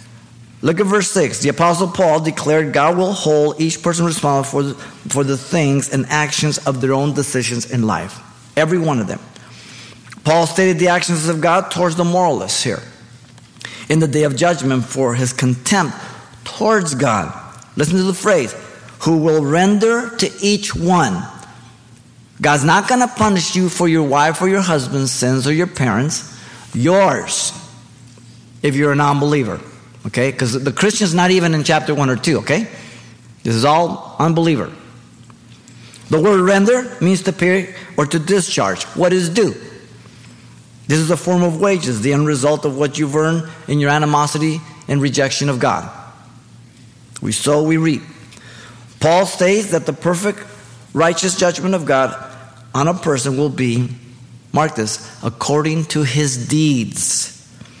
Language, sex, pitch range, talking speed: English, male, 125-175 Hz, 160 wpm